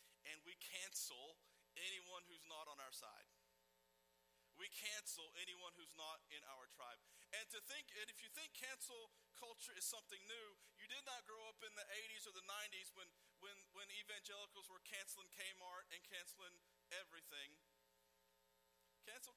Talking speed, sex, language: 160 wpm, male, English